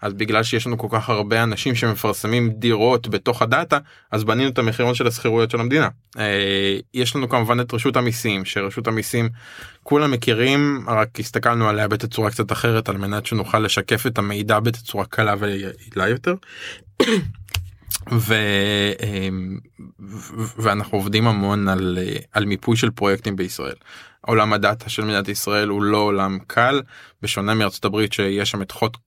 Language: Hebrew